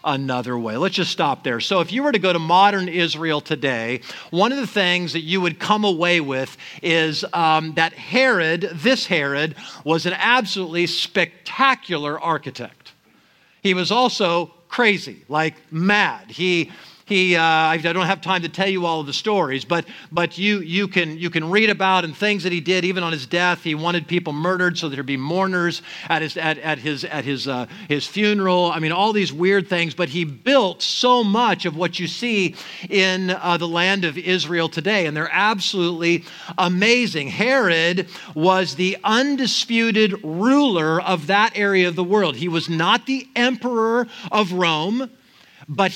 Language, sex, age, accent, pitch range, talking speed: English, male, 50-69, American, 170-210 Hz, 180 wpm